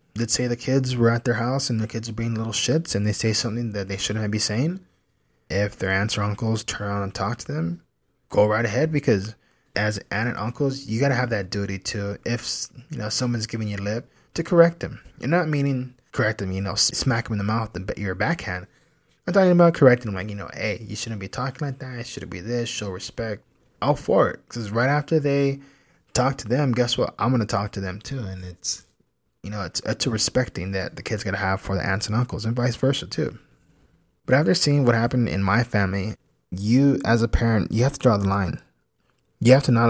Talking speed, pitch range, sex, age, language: 245 wpm, 100-130 Hz, male, 20-39, English